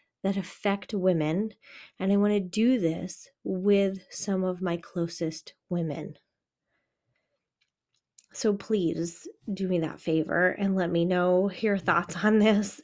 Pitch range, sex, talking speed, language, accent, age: 175-220 Hz, female, 135 wpm, English, American, 30-49